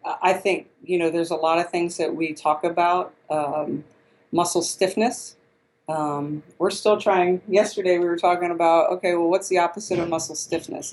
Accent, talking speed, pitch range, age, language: American, 180 wpm, 155-185 Hz, 40-59, English